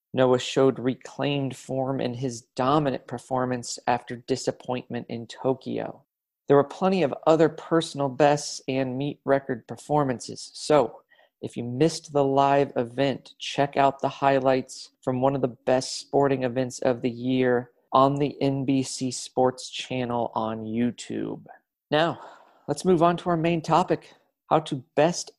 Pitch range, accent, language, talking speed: 130-145 Hz, American, English, 145 wpm